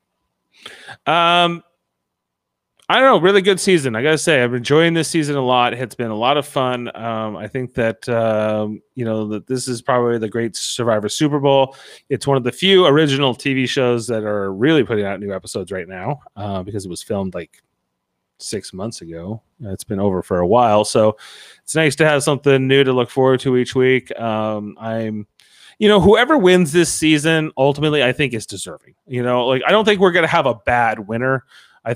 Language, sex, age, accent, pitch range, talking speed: English, male, 30-49, American, 115-155 Hz, 210 wpm